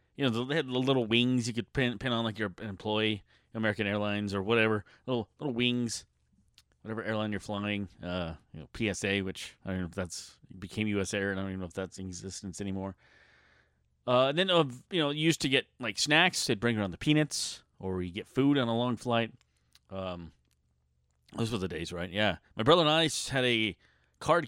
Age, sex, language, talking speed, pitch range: 30-49, male, English, 220 wpm, 90-120 Hz